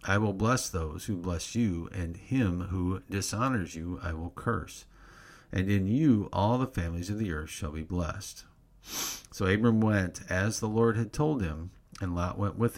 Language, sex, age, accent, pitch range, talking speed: English, male, 50-69, American, 90-110 Hz, 190 wpm